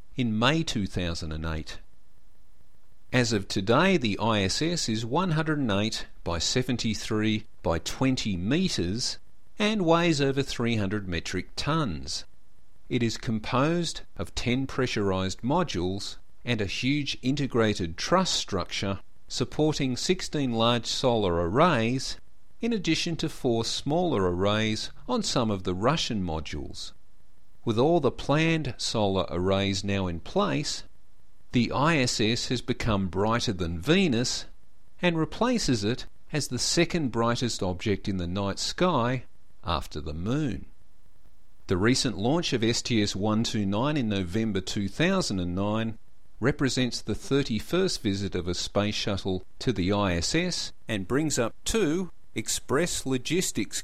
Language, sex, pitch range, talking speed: English, male, 100-135 Hz, 120 wpm